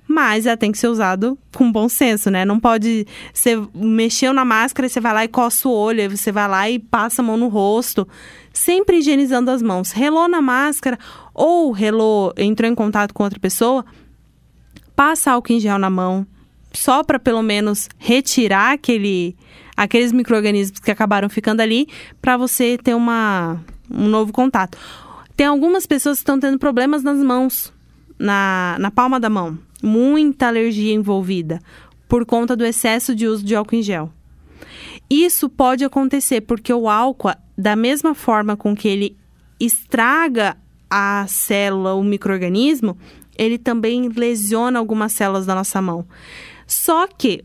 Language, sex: Portuguese, female